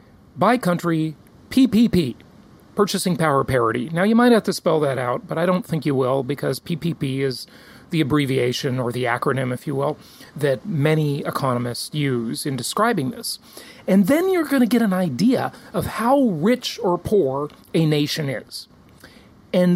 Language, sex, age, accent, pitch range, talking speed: English, male, 40-59, American, 150-215 Hz, 165 wpm